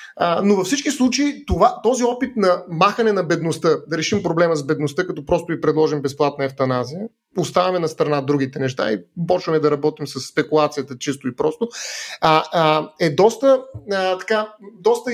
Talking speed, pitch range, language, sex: 175 wpm, 155-225 Hz, Bulgarian, male